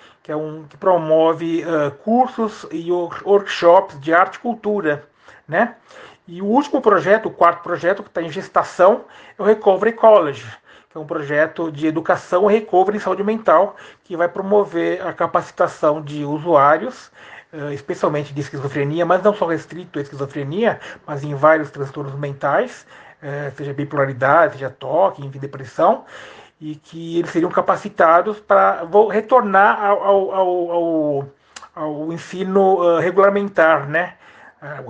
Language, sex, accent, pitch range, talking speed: Portuguese, male, Brazilian, 150-195 Hz, 145 wpm